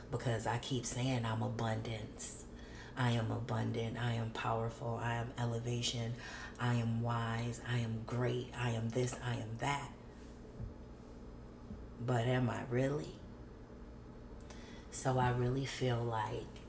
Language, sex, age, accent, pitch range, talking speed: English, female, 30-49, American, 110-130 Hz, 130 wpm